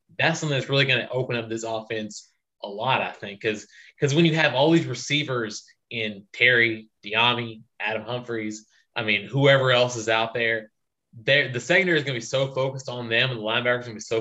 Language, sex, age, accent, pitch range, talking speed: English, male, 20-39, American, 115-145 Hz, 220 wpm